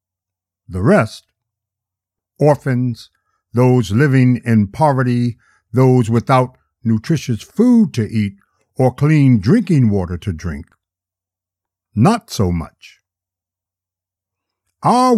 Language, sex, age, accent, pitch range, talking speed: English, male, 60-79, American, 95-125 Hz, 90 wpm